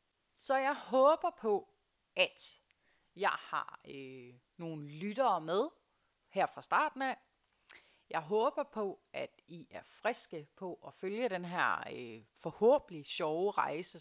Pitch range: 155-225 Hz